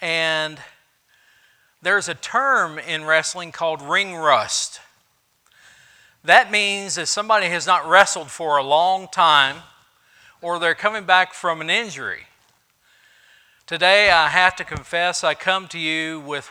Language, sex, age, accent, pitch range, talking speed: English, male, 50-69, American, 140-170 Hz, 135 wpm